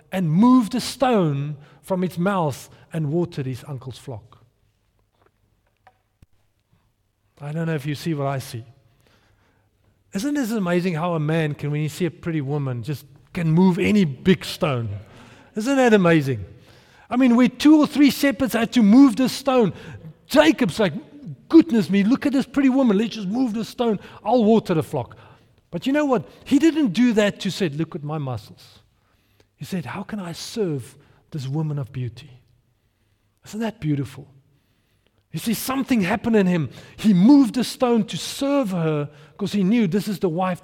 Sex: male